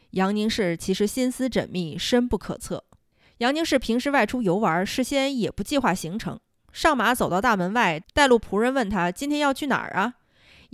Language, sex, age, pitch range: Chinese, female, 20-39, 185-255 Hz